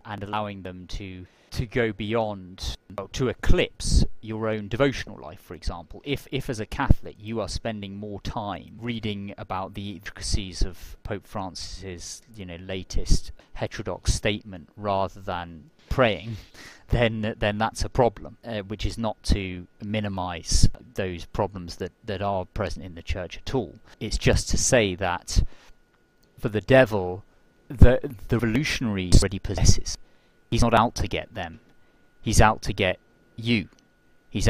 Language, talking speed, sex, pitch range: English, 150 wpm, male, 90-110 Hz